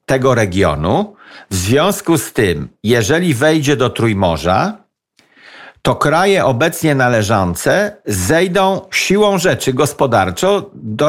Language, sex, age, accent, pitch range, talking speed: Polish, male, 50-69, native, 120-165 Hz, 105 wpm